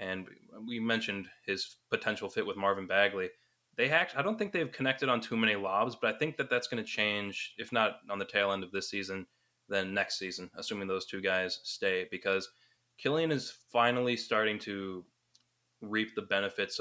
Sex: male